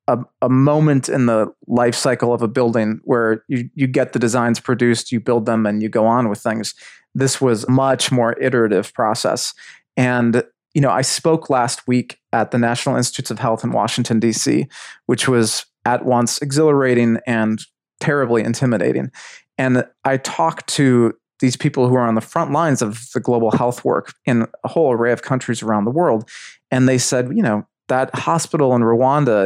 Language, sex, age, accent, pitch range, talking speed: English, male, 30-49, American, 115-135 Hz, 185 wpm